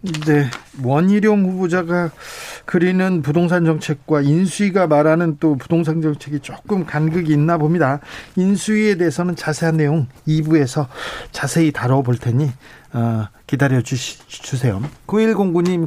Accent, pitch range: native, 140-175 Hz